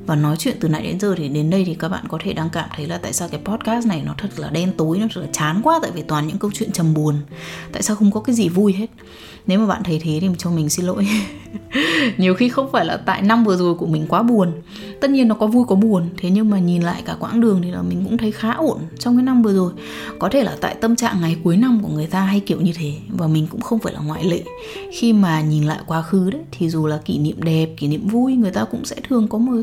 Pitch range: 180-235 Hz